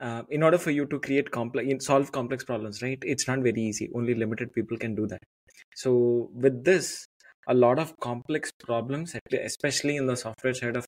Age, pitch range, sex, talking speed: 20-39, 120-145 Hz, male, 200 wpm